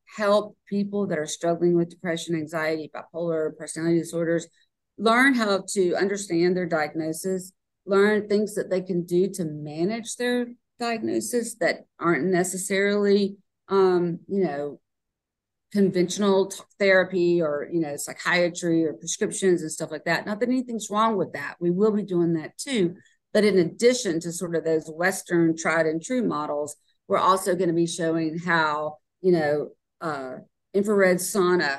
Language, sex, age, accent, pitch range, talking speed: English, female, 50-69, American, 165-200 Hz, 155 wpm